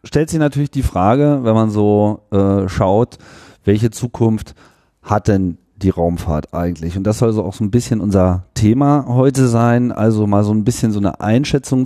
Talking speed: 185 wpm